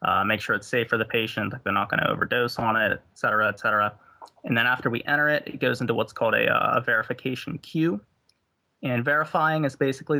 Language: English